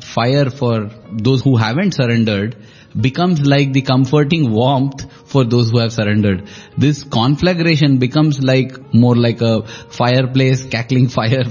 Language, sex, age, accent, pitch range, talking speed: English, male, 10-29, Indian, 115-145 Hz, 135 wpm